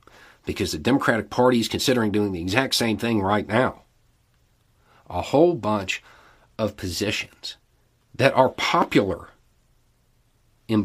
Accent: American